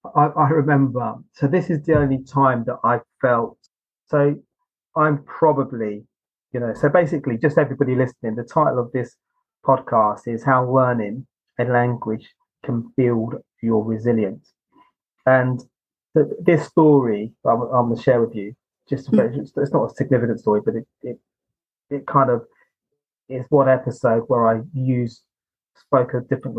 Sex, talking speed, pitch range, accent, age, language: male, 150 wpm, 115-140 Hz, British, 30-49, English